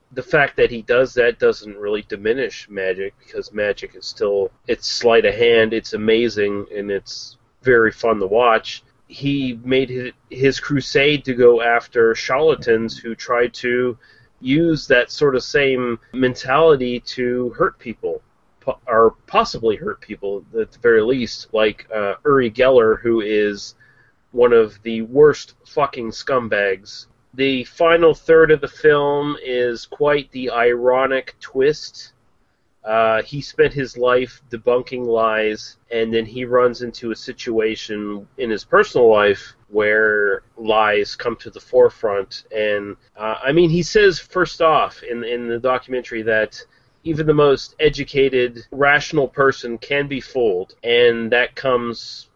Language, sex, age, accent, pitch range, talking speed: English, male, 30-49, American, 115-165 Hz, 145 wpm